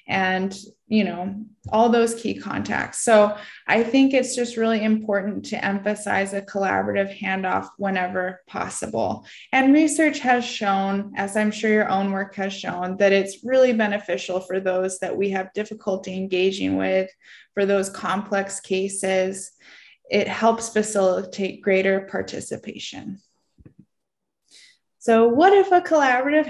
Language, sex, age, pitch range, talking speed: English, female, 20-39, 200-270 Hz, 135 wpm